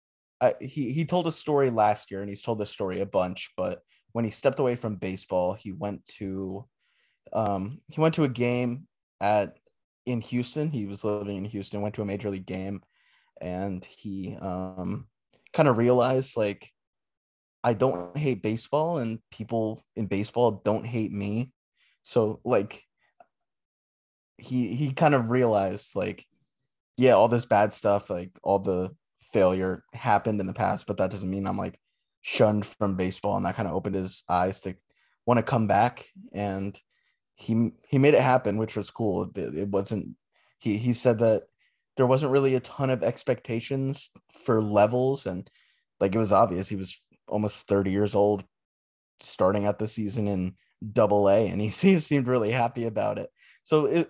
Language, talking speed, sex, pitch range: English, 175 wpm, male, 100-125 Hz